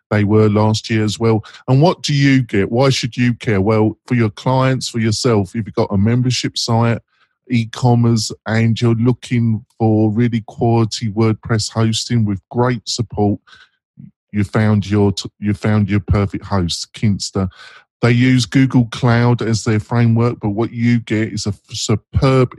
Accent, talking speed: British, 165 wpm